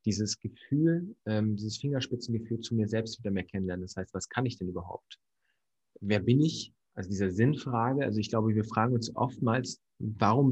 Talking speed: 185 wpm